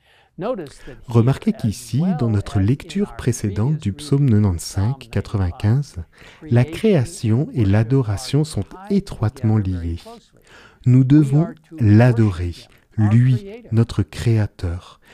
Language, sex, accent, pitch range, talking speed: French, male, French, 105-140 Hz, 90 wpm